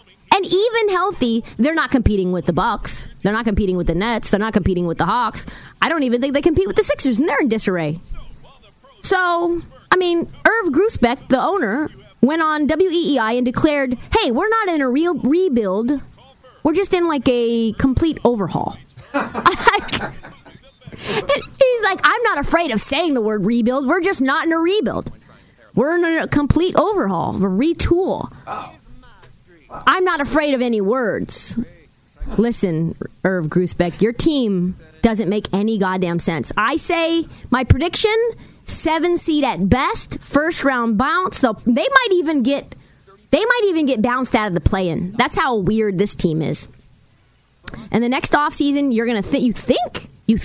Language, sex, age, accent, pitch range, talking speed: English, female, 20-39, American, 210-325 Hz, 170 wpm